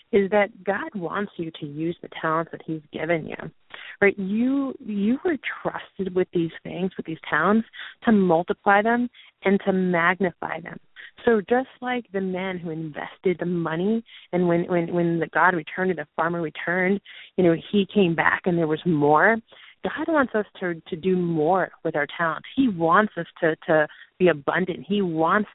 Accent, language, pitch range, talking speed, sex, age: American, English, 170-215 Hz, 185 wpm, female, 30-49